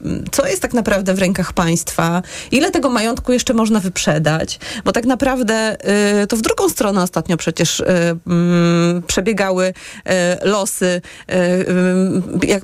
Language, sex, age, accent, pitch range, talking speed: Polish, female, 30-49, native, 195-255 Hz, 140 wpm